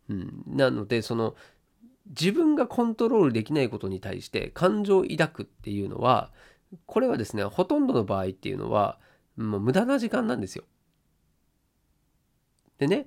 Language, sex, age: Japanese, male, 40-59